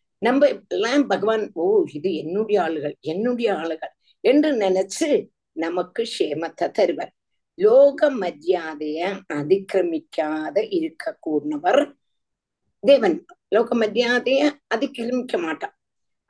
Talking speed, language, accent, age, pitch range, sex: 85 wpm, Tamil, native, 50-69, 170-290 Hz, female